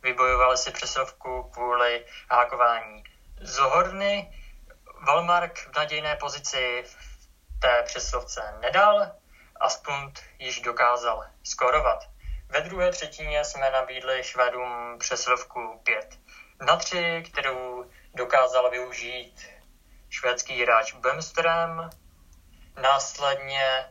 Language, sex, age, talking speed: Czech, male, 20-39, 95 wpm